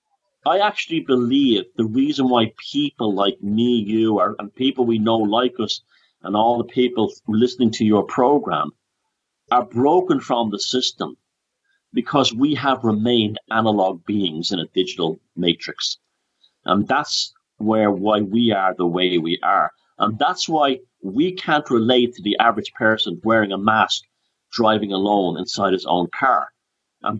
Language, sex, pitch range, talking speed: English, male, 110-165 Hz, 150 wpm